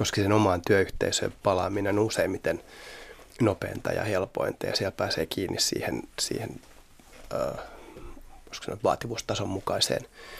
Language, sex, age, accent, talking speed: Finnish, male, 20-39, native, 110 wpm